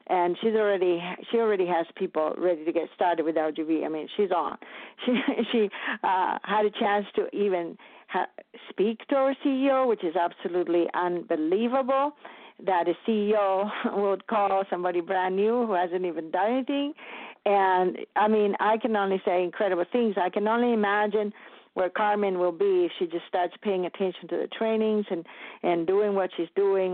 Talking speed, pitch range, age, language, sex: 175 wpm, 180-225 Hz, 50-69, English, female